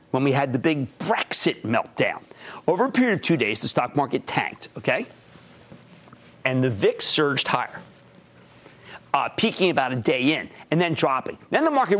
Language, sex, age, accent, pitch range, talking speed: English, male, 40-59, American, 145-230 Hz, 175 wpm